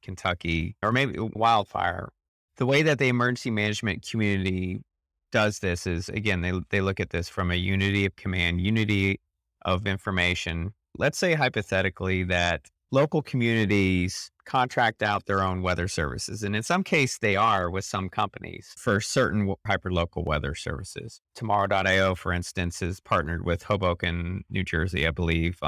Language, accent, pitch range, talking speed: English, American, 90-110 Hz, 155 wpm